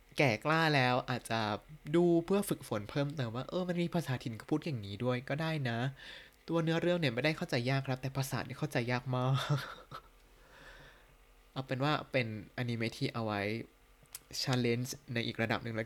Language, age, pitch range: Thai, 20-39, 115-150 Hz